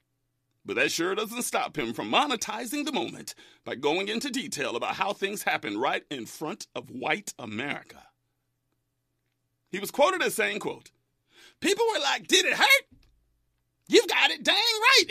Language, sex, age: English, male, 40-59